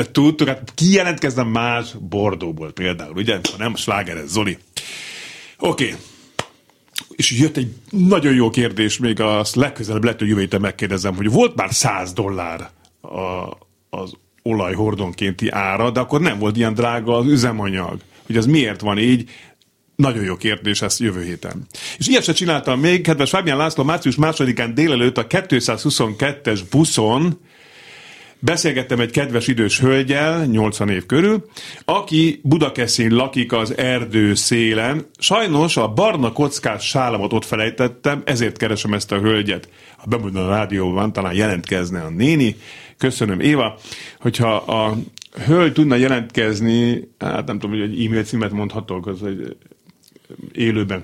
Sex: male